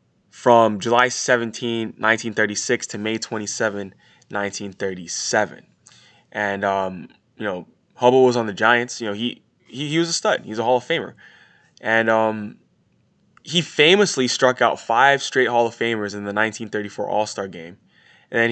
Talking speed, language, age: 160 wpm, English, 20-39